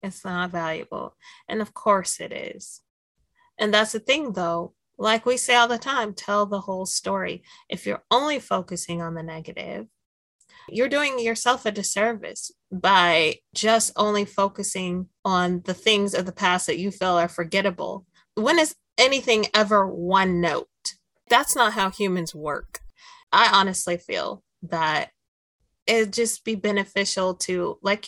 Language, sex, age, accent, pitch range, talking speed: English, female, 30-49, American, 175-220 Hz, 150 wpm